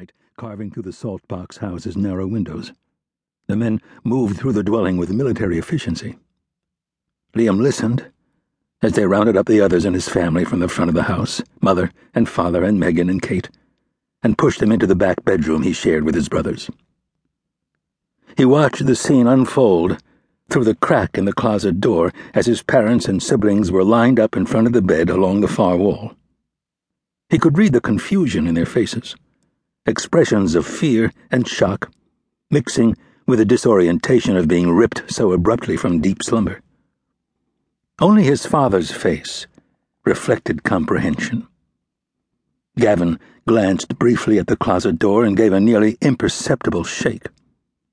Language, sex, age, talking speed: English, male, 60-79, 155 wpm